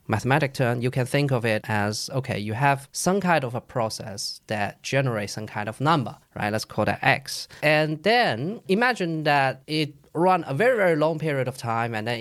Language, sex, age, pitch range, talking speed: English, male, 20-39, 115-155 Hz, 205 wpm